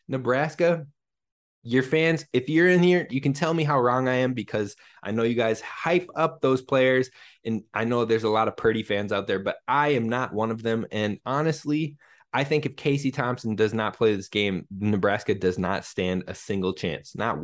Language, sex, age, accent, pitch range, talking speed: English, male, 20-39, American, 110-145 Hz, 215 wpm